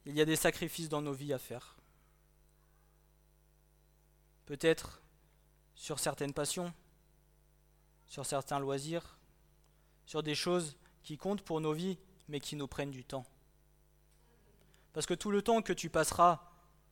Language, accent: French, French